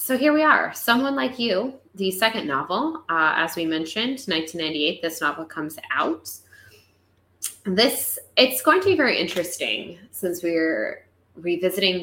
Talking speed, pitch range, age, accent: 145 wpm, 150-210 Hz, 10-29, American